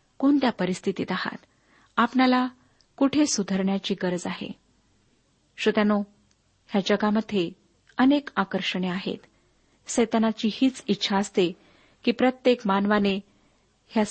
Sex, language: female, Marathi